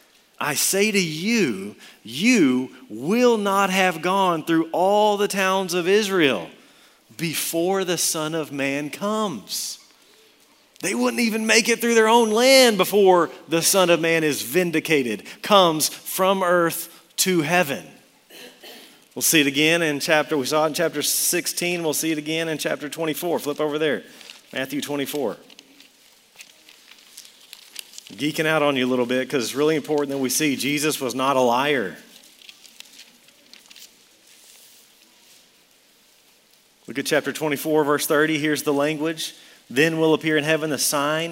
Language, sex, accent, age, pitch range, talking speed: English, male, American, 40-59, 145-180 Hz, 145 wpm